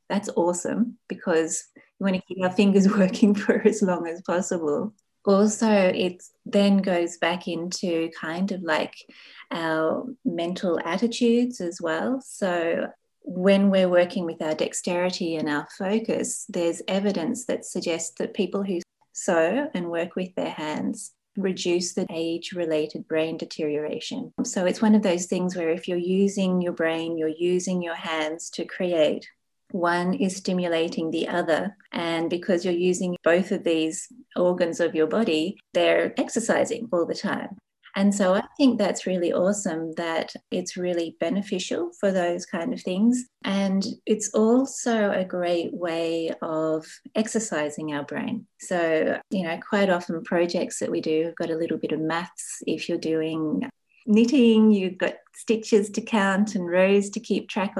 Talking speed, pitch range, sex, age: 160 wpm, 170-210 Hz, female, 30-49